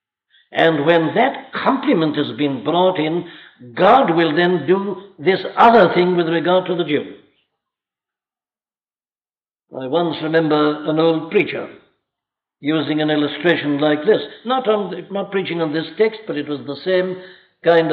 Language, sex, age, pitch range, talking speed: English, male, 60-79, 155-180 Hz, 145 wpm